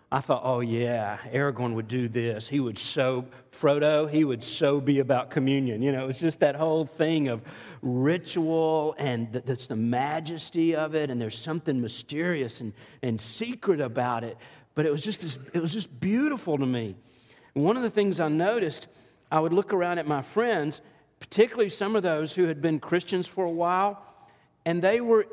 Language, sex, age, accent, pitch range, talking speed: English, male, 40-59, American, 130-175 Hz, 180 wpm